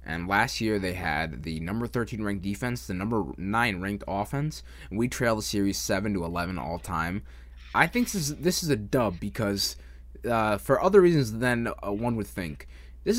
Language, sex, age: English, male, 20-39